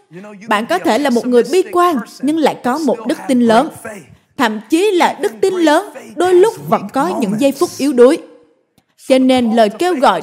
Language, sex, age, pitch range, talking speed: Vietnamese, female, 20-39, 225-325 Hz, 205 wpm